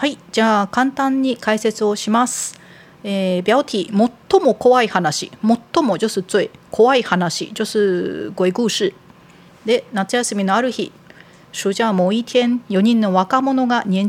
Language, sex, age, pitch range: Japanese, female, 40-59, 185-245 Hz